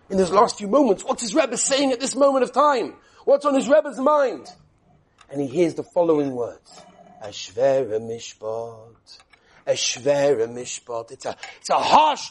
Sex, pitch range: male, 215-260 Hz